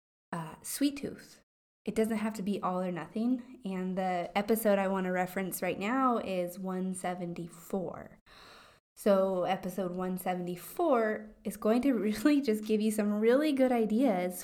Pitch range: 180-215 Hz